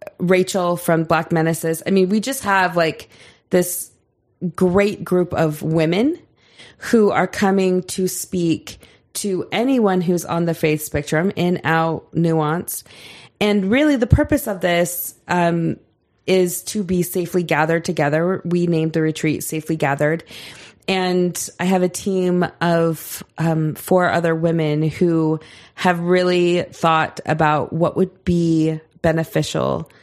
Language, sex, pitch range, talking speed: English, female, 155-185 Hz, 135 wpm